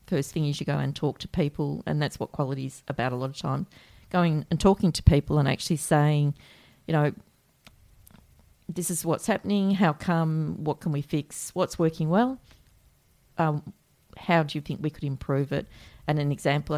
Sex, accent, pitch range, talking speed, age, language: female, Australian, 150-170 Hz, 195 wpm, 40-59, English